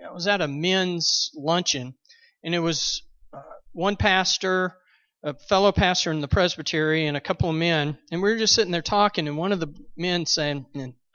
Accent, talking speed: American, 195 wpm